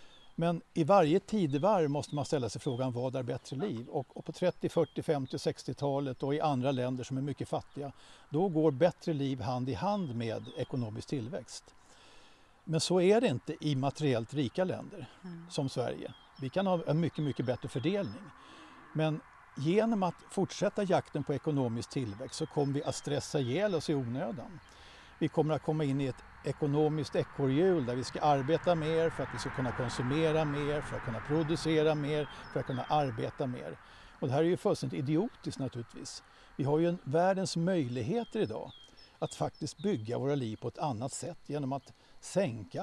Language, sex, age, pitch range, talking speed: Swedish, male, 60-79, 135-165 Hz, 180 wpm